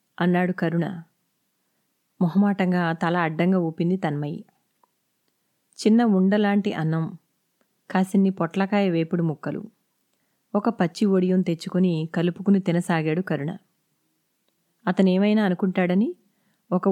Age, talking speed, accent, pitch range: 20-39, 85 wpm, native, 175-205 Hz